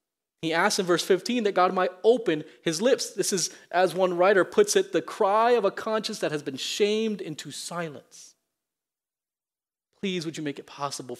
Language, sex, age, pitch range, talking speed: English, male, 30-49, 140-195 Hz, 190 wpm